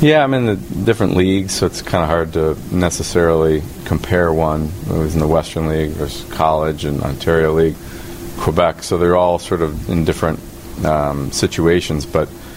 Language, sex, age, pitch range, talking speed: English, male, 30-49, 75-85 Hz, 175 wpm